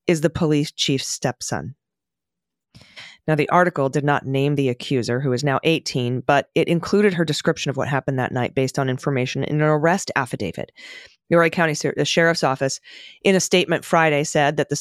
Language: English